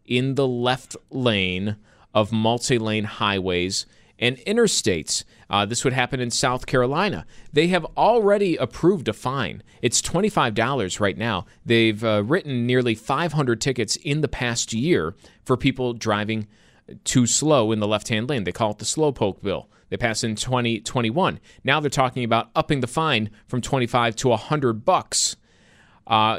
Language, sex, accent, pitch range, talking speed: English, male, American, 110-145 Hz, 155 wpm